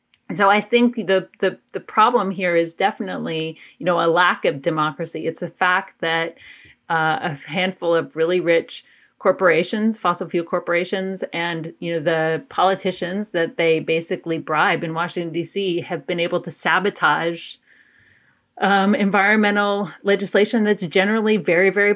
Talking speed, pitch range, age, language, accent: 150 wpm, 165-195 Hz, 30-49, English, American